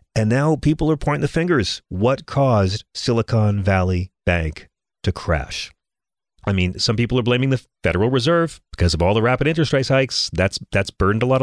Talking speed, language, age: 190 wpm, English, 40-59